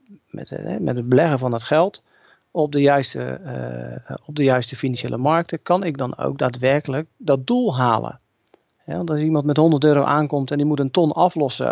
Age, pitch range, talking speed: 40-59, 125-155 Hz, 200 wpm